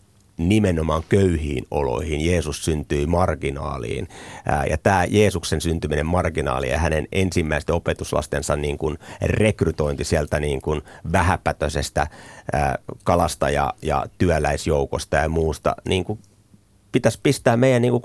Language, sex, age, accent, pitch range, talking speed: Finnish, male, 30-49, native, 75-95 Hz, 110 wpm